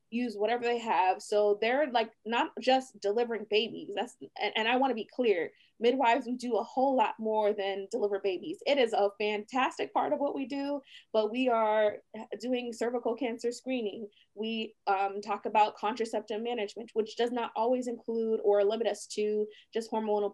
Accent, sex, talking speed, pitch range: American, female, 180 wpm, 205-245 Hz